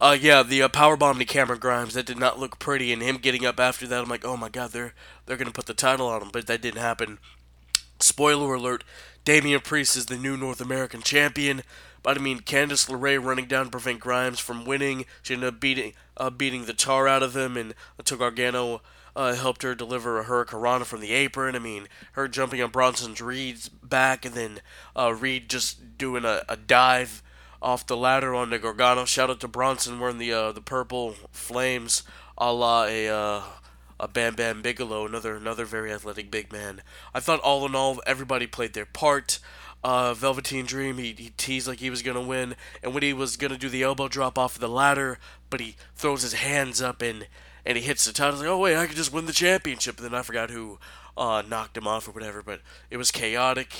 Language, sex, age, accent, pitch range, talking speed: English, male, 20-39, American, 115-135 Hz, 220 wpm